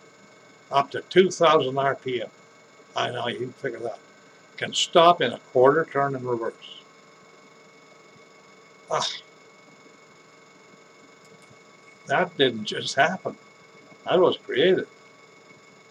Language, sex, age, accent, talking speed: English, male, 60-79, American, 95 wpm